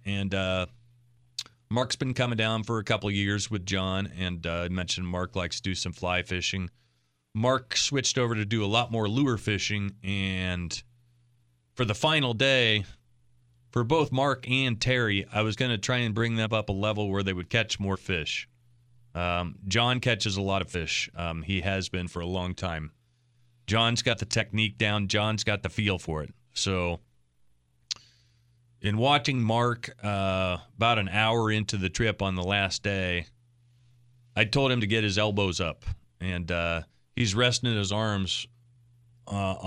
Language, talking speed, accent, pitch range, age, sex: English, 180 wpm, American, 95-120 Hz, 30-49, male